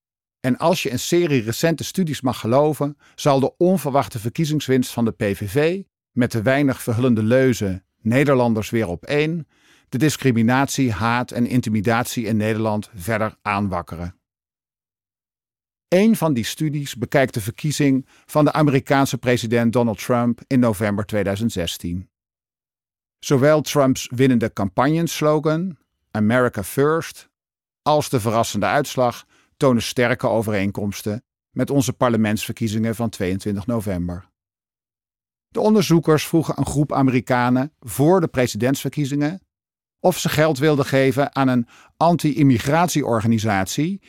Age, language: 50-69, Dutch